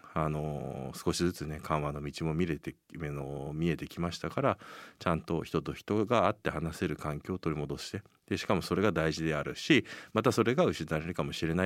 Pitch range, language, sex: 75-85 Hz, Japanese, male